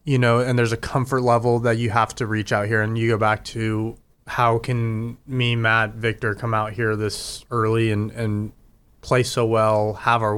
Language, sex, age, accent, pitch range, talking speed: English, male, 20-39, American, 110-130 Hz, 210 wpm